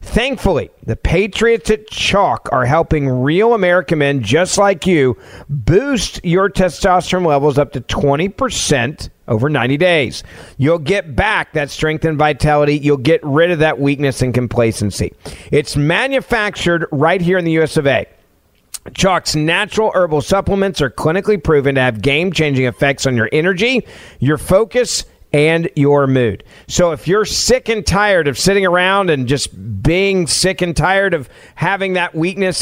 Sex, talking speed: male, 155 wpm